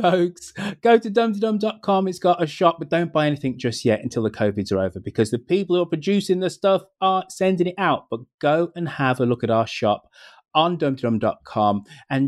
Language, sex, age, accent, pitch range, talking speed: English, male, 30-49, British, 110-165 Hz, 210 wpm